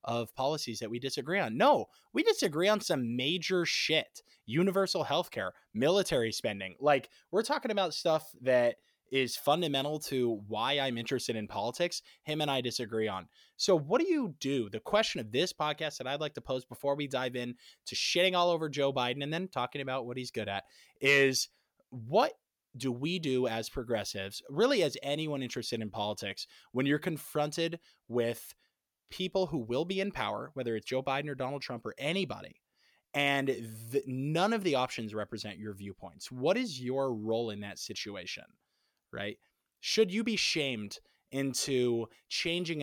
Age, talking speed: 20-39, 170 wpm